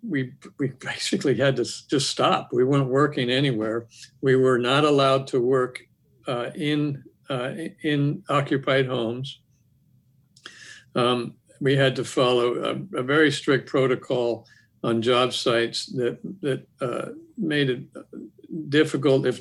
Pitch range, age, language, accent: 120-140 Hz, 60-79, English, American